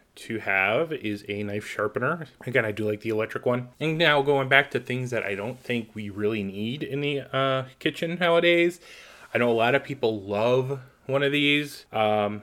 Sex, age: male, 20-39